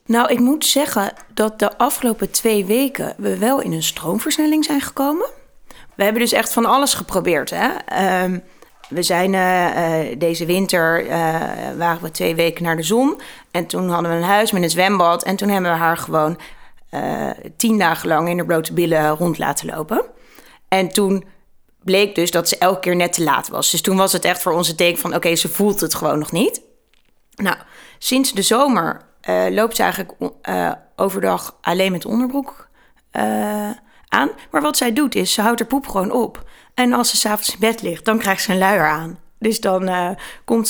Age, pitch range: 30-49, 175-235 Hz